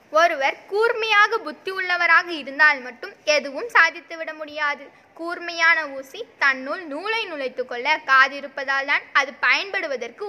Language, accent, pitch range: Tamil, native, 280-355 Hz